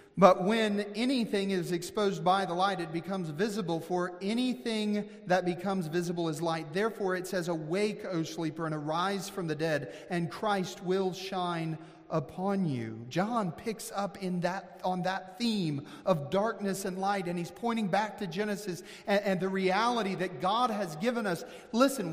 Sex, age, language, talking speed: male, 40-59, English, 170 wpm